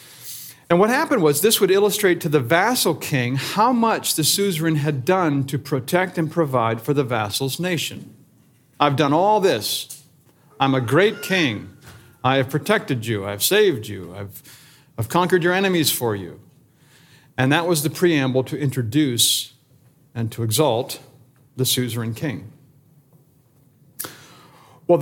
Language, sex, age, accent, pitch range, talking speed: English, male, 50-69, American, 130-165 Hz, 145 wpm